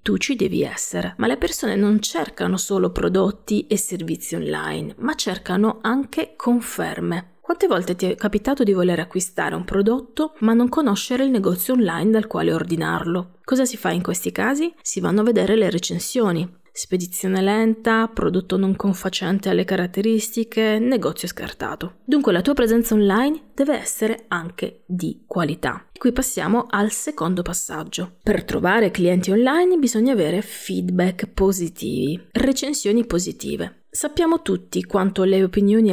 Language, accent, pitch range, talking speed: Italian, native, 185-240 Hz, 145 wpm